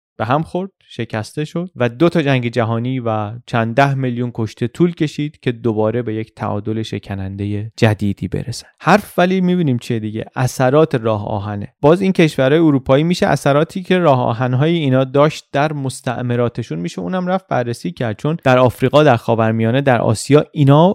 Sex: male